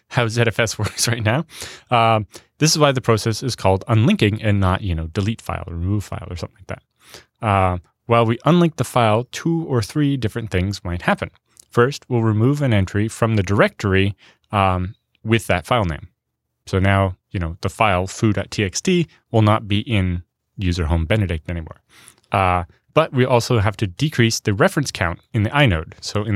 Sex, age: male, 20-39